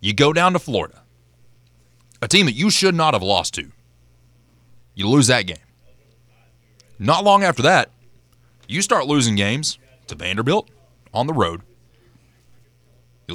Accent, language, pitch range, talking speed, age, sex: American, English, 110-130 Hz, 145 wpm, 30-49, male